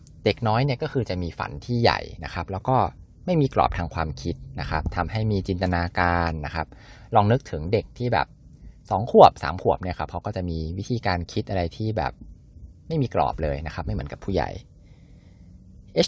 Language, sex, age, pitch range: Thai, male, 20-39, 85-110 Hz